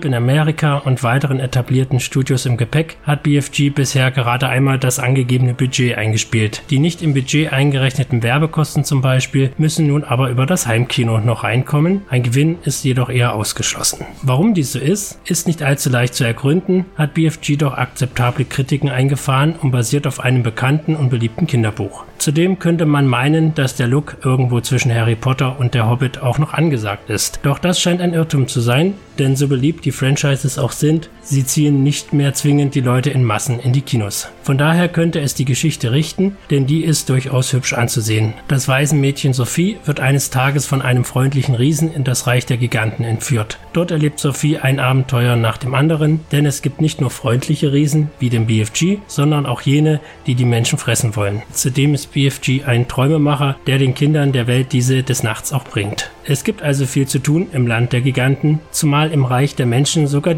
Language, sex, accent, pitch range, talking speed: German, male, German, 125-150 Hz, 195 wpm